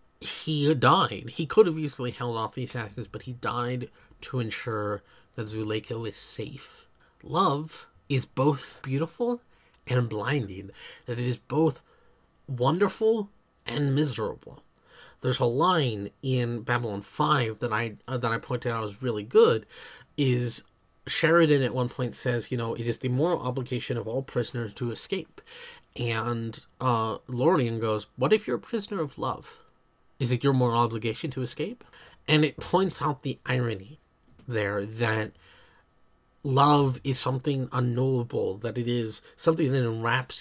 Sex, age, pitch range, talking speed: male, 30-49, 110-140 Hz, 150 wpm